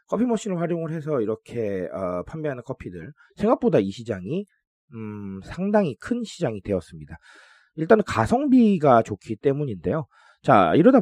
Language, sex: Korean, male